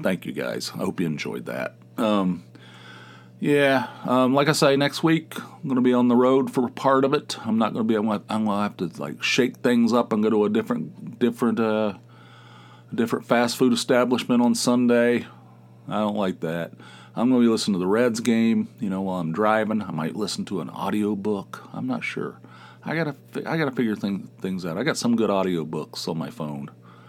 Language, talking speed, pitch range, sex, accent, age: English, 215 wpm, 85-125 Hz, male, American, 40-59